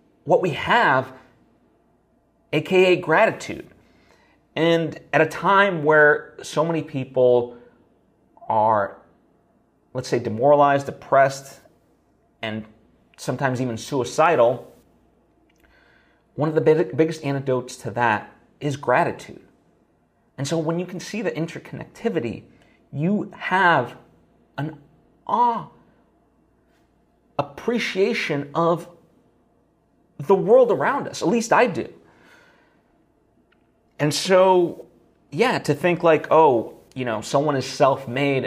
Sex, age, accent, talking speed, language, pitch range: male, 30-49, American, 105 wpm, English, 130-180 Hz